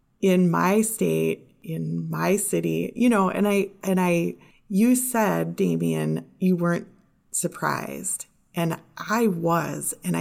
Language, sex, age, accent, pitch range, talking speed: English, female, 30-49, American, 165-205 Hz, 130 wpm